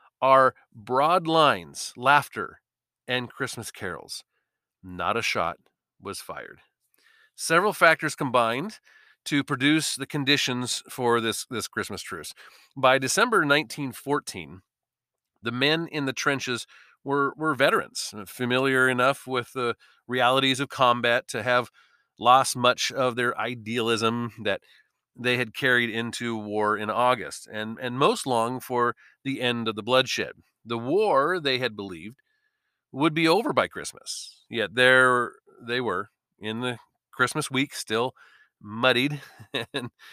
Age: 40-59